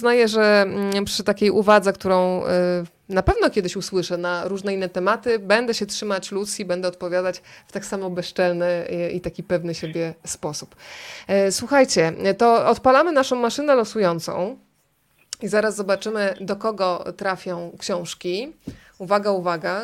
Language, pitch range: Polish, 180-210 Hz